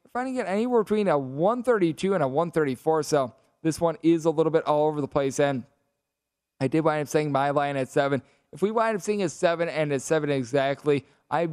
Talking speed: 225 wpm